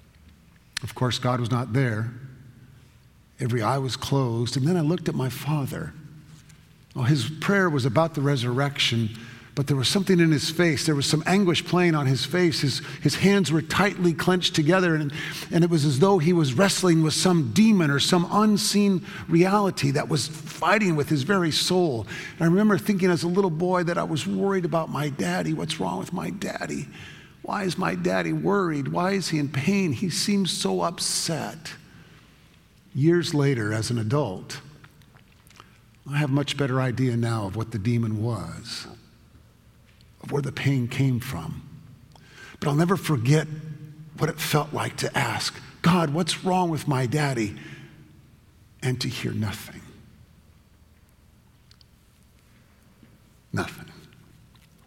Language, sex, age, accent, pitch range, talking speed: English, male, 50-69, American, 130-175 Hz, 160 wpm